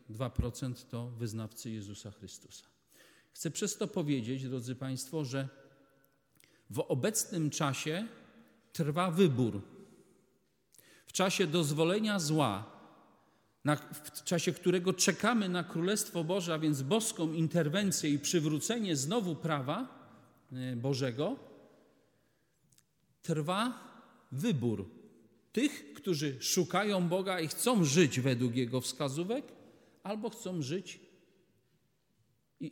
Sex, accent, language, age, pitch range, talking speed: male, native, Polish, 40-59, 125-180 Hz, 100 wpm